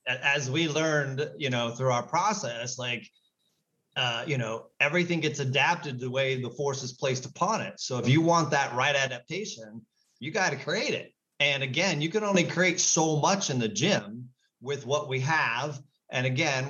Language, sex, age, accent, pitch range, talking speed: English, male, 30-49, American, 125-160 Hz, 185 wpm